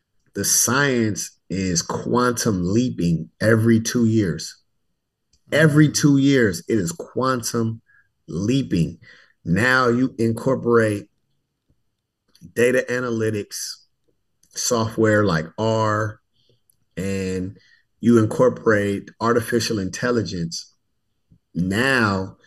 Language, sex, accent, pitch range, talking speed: English, male, American, 100-120 Hz, 75 wpm